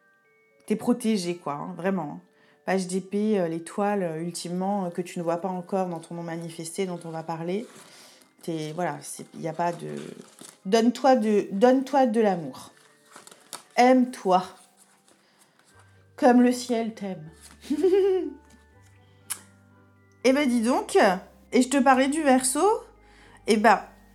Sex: female